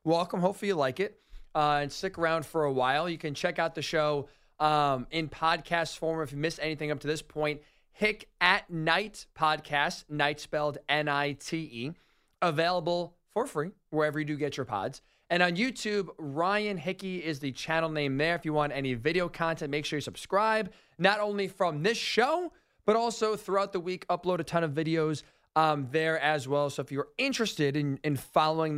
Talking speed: 190 wpm